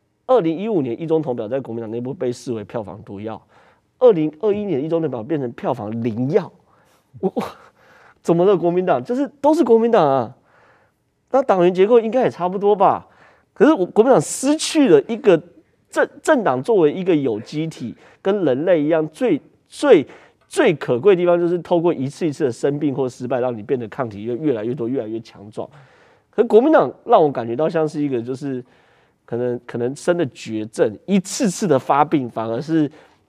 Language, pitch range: Chinese, 125-190 Hz